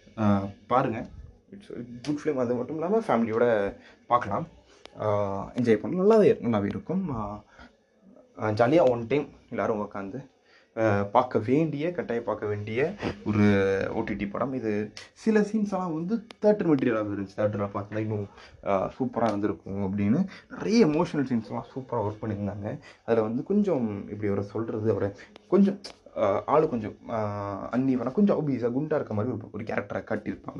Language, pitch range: Tamil, 105-150 Hz